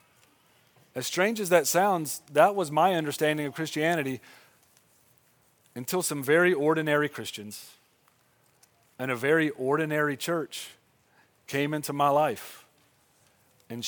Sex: male